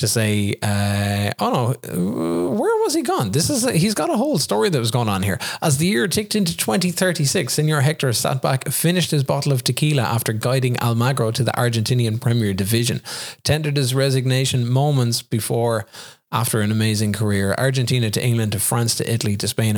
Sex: male